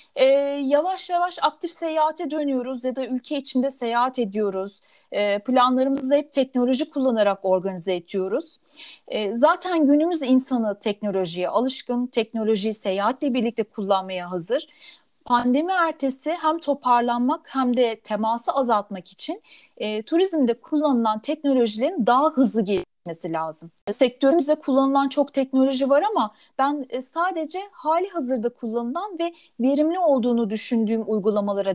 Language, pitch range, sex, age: Turkish, 230-320 Hz, female, 40-59